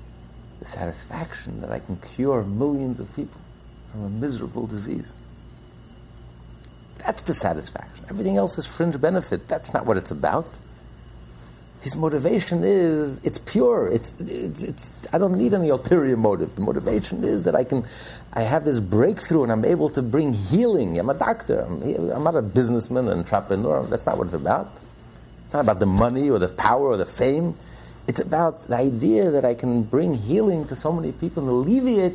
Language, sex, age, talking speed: English, male, 60-79, 180 wpm